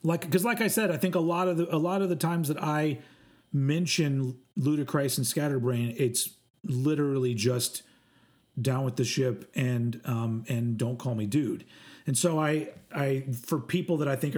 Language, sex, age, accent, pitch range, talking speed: English, male, 40-59, American, 120-155 Hz, 190 wpm